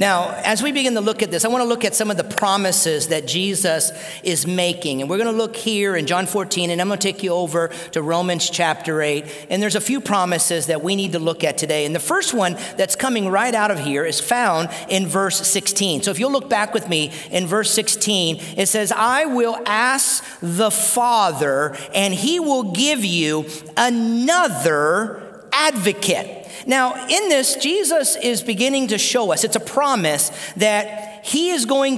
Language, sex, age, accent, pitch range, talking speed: English, male, 40-59, American, 185-245 Hz, 205 wpm